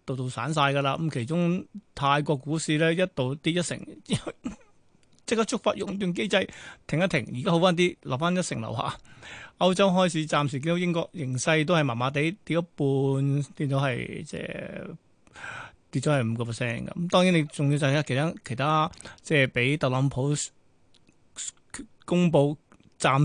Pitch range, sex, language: 140-180 Hz, male, Chinese